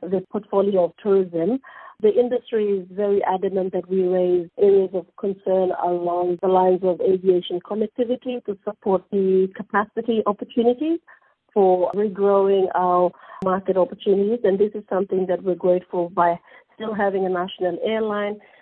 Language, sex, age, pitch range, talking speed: English, female, 50-69, 175-205 Hz, 140 wpm